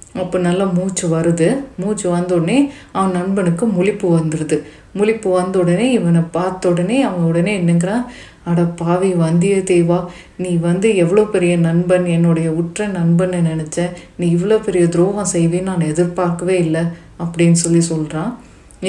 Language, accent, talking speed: Tamil, native, 125 wpm